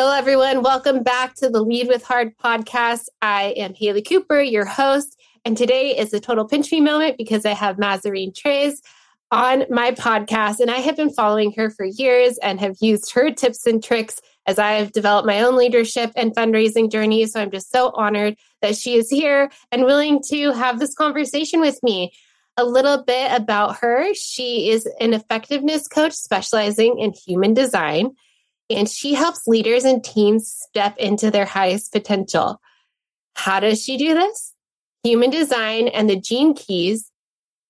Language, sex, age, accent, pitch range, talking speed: English, female, 20-39, American, 205-260 Hz, 175 wpm